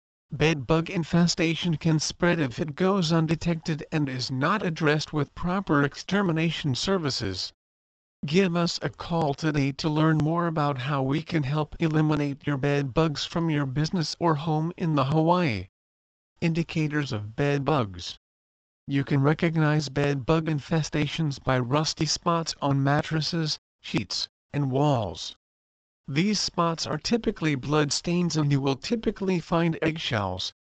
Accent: American